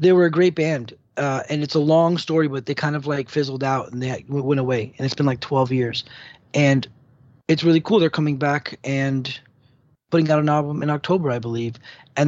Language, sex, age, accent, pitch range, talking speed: English, male, 20-39, American, 130-150 Hz, 220 wpm